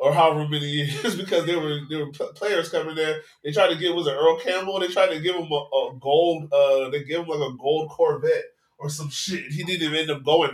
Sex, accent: male, American